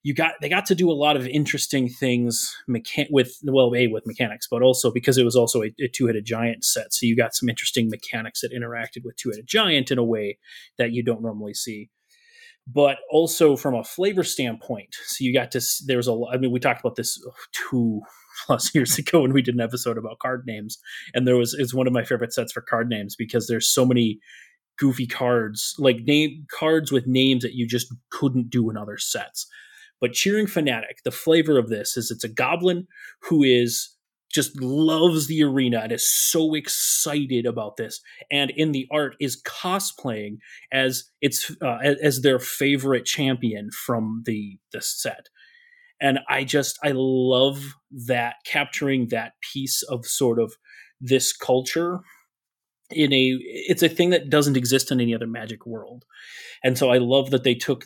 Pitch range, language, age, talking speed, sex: 120-145 Hz, English, 30-49, 190 wpm, male